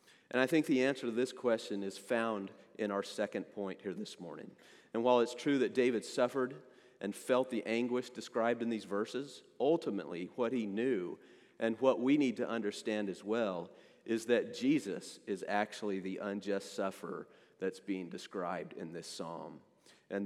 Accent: American